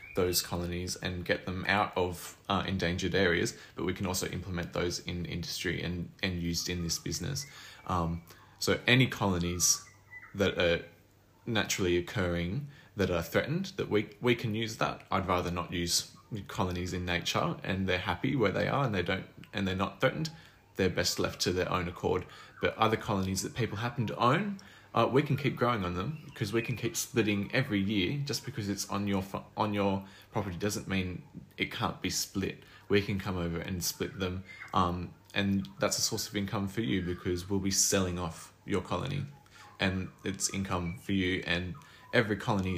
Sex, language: male, English